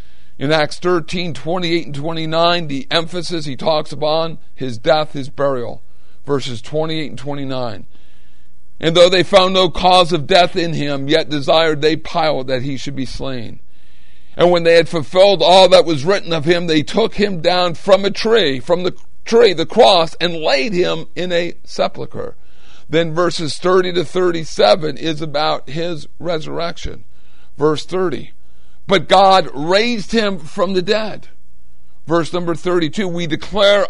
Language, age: English, 50-69